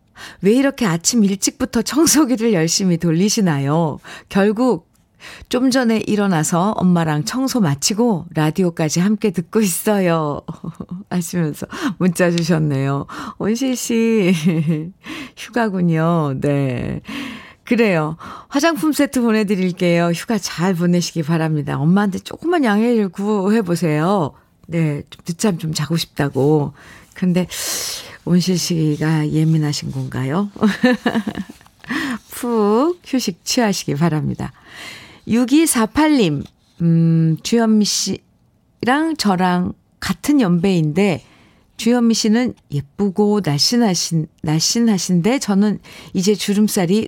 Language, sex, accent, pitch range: Korean, female, native, 165-230 Hz